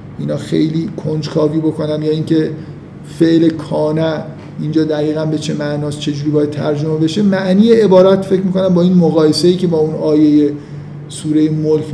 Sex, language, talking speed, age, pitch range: male, Persian, 155 wpm, 50-69, 150-175 Hz